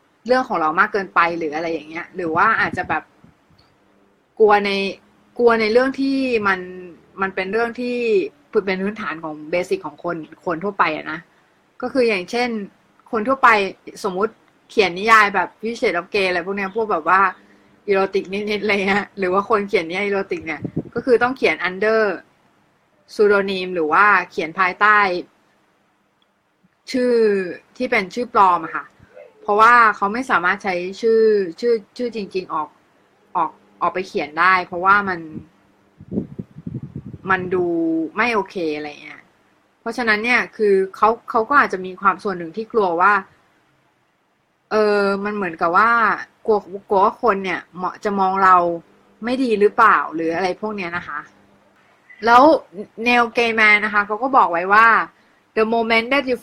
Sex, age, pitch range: female, 20-39, 180-225 Hz